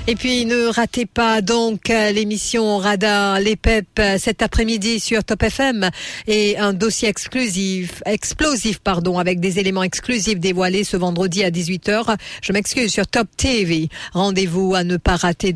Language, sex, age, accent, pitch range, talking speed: English, female, 50-69, French, 180-220 Hz, 155 wpm